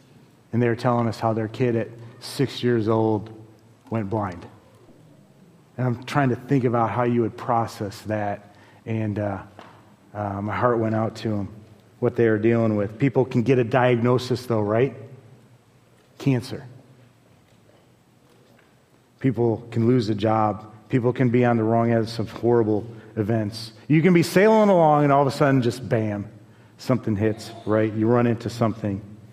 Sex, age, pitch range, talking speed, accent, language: male, 40-59, 110-145 Hz, 170 wpm, American, English